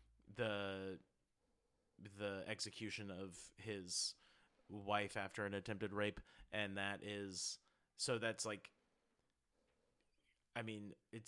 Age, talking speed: 30-49, 100 wpm